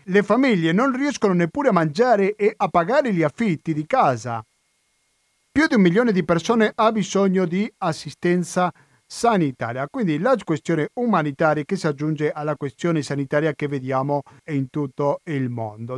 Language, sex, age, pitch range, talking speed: Italian, male, 40-59, 135-185 Hz, 155 wpm